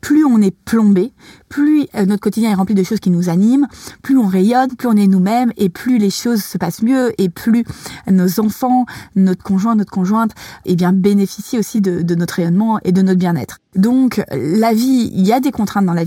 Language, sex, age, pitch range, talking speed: French, female, 30-49, 185-225 Hz, 215 wpm